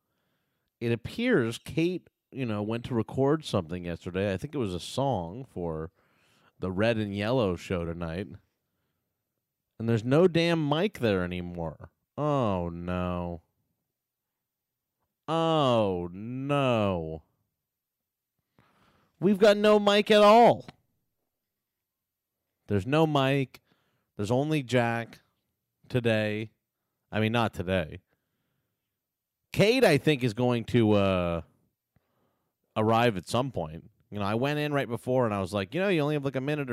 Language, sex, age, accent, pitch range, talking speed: English, male, 30-49, American, 90-130 Hz, 130 wpm